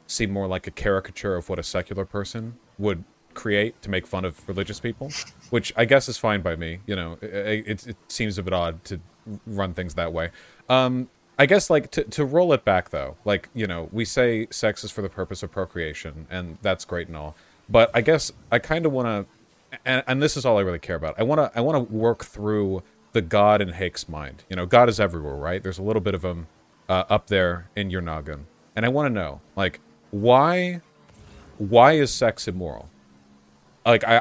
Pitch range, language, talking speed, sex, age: 85-115 Hz, English, 220 wpm, male, 30-49